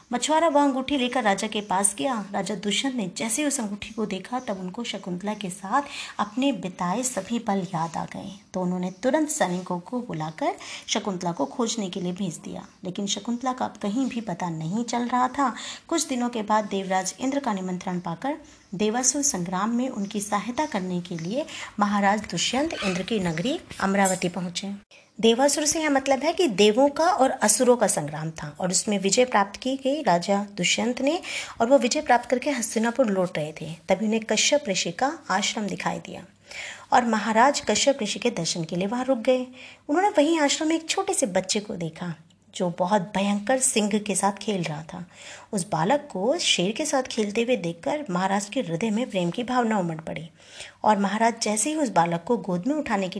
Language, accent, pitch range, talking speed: Hindi, native, 190-265 Hz, 195 wpm